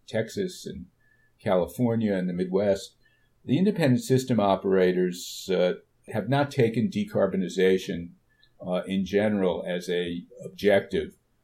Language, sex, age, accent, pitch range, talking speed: English, male, 50-69, American, 95-125 Hz, 110 wpm